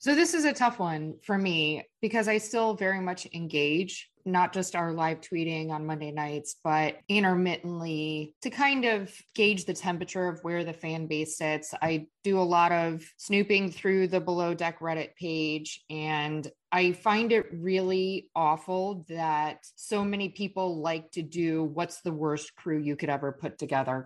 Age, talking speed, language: 20-39, 175 wpm, English